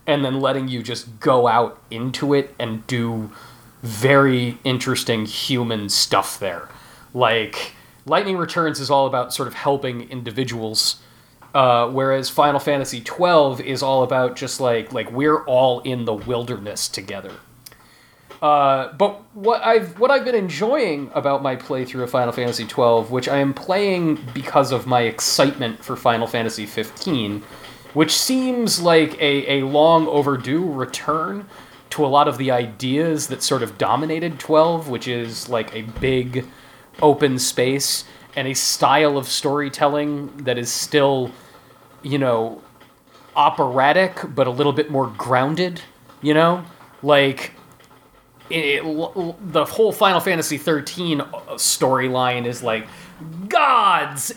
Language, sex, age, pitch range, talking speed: English, male, 30-49, 125-150 Hz, 140 wpm